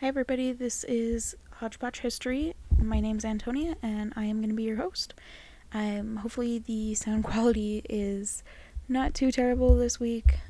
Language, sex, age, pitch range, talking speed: English, female, 10-29, 180-220 Hz, 170 wpm